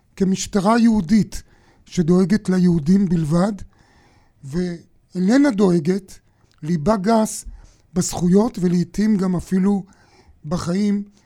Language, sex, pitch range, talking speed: Hebrew, male, 160-195 Hz, 75 wpm